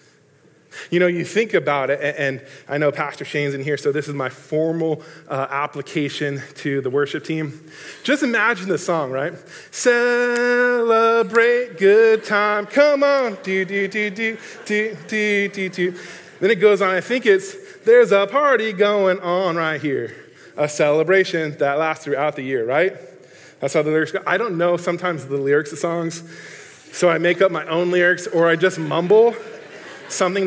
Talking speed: 160 wpm